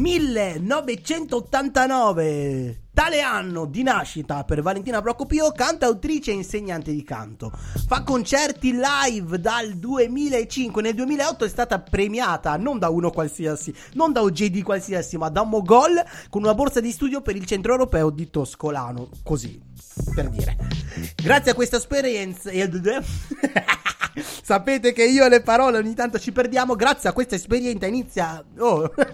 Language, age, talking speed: Italian, 30-49, 145 wpm